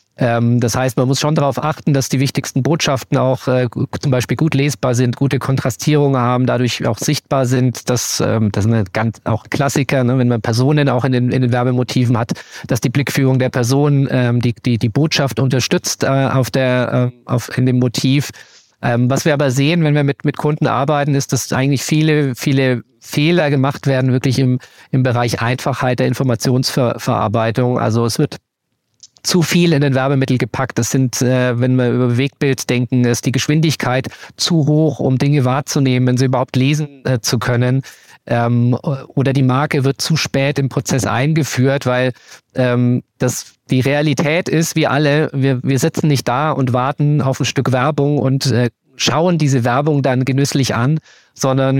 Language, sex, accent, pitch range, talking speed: German, male, German, 125-145 Hz, 185 wpm